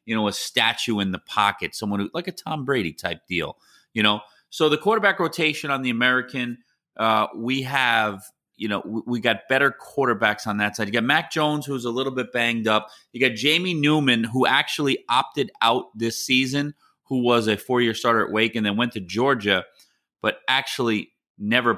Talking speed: 200 wpm